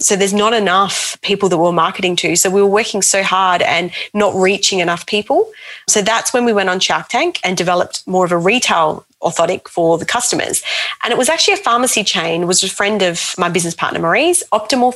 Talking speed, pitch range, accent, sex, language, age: 215 wpm, 185-240 Hz, Australian, female, English, 30-49